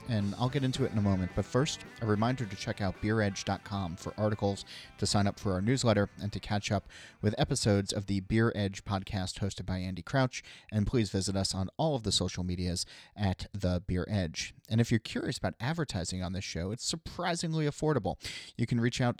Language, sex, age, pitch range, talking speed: English, male, 30-49, 90-115 Hz, 215 wpm